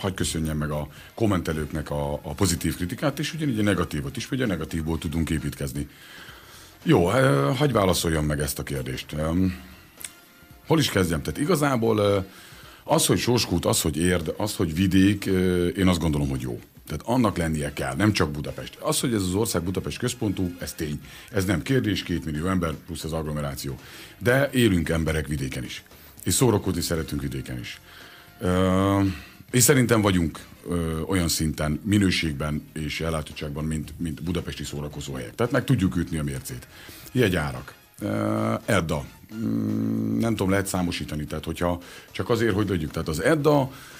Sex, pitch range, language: male, 75-105 Hz, Hungarian